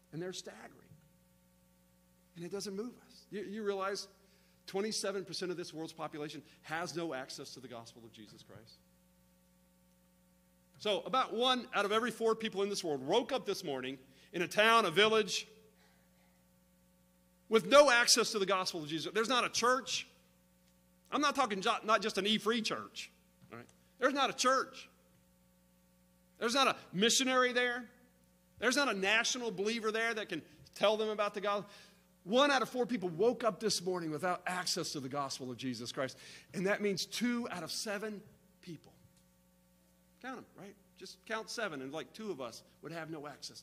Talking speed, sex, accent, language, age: 175 wpm, male, American, English, 40-59